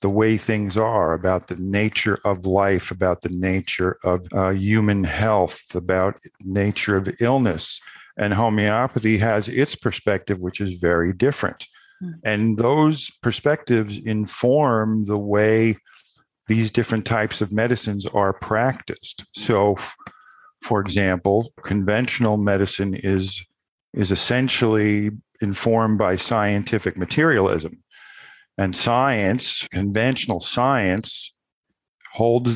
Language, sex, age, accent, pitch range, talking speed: English, male, 50-69, American, 100-120 Hz, 110 wpm